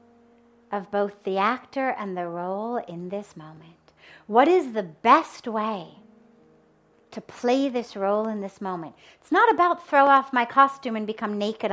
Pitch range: 185-260 Hz